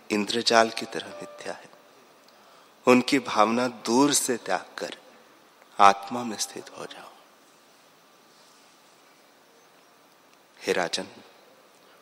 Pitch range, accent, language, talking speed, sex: 100-125 Hz, native, Hindi, 90 wpm, male